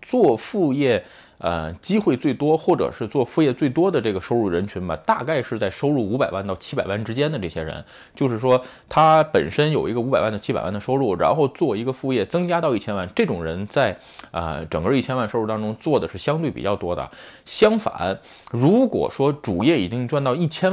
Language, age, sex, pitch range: Chinese, 20-39, male, 95-140 Hz